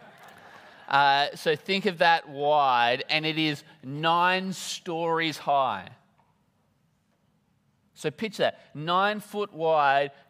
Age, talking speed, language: 30-49, 105 wpm, English